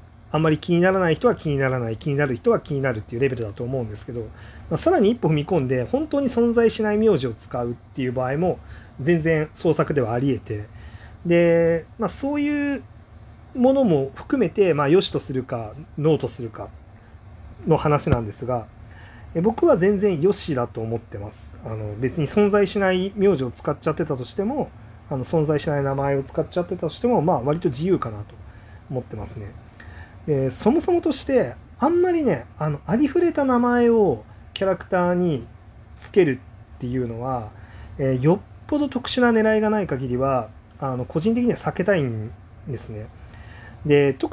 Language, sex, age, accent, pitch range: Japanese, male, 40-59, native, 115-185 Hz